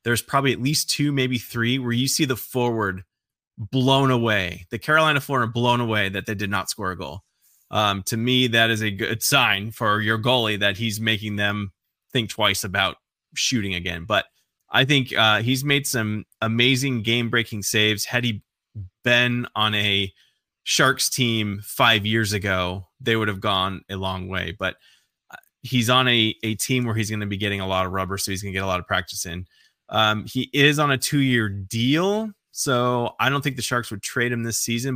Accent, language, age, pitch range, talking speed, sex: American, English, 20-39, 100-120 Hz, 200 wpm, male